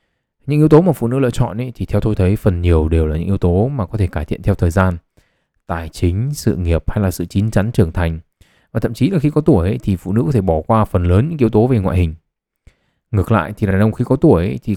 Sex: male